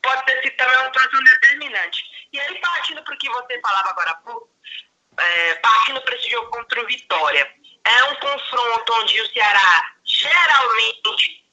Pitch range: 220-310 Hz